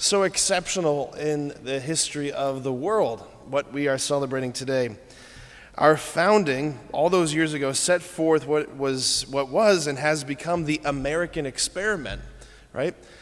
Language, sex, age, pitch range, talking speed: English, male, 30-49, 130-155 Hz, 145 wpm